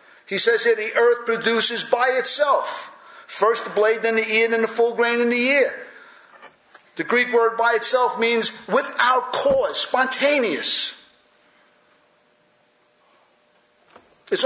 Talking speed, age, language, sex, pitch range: 130 wpm, 50-69, English, male, 185-260 Hz